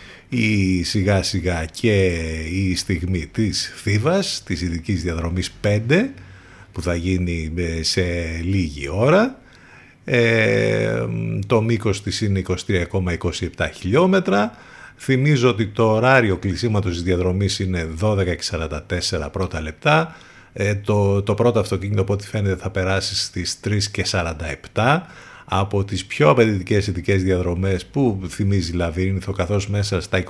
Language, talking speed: Greek, 115 wpm